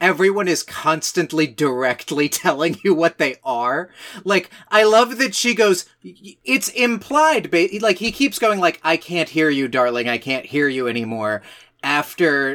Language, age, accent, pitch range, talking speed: English, 30-49, American, 125-205 Hz, 165 wpm